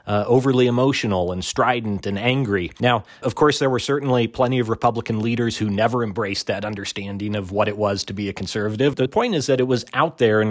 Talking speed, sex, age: 225 wpm, male, 40-59